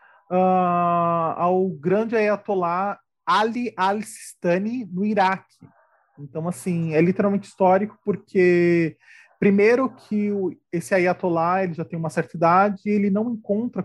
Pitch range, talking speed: 155-200 Hz, 120 wpm